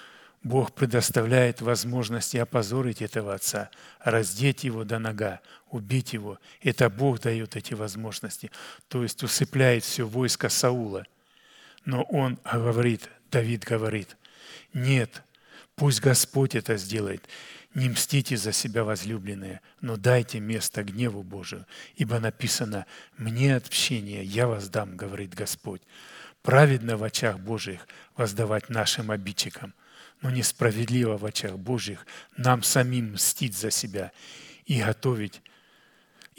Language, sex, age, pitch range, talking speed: Russian, male, 40-59, 110-130 Hz, 115 wpm